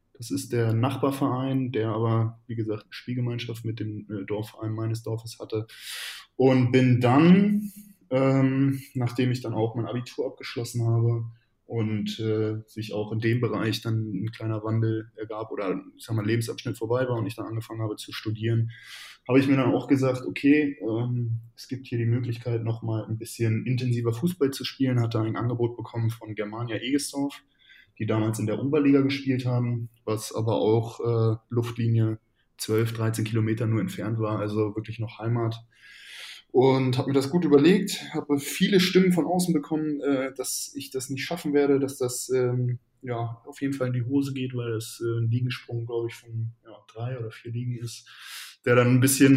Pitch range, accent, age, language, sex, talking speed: 115-135 Hz, German, 10-29, German, male, 175 wpm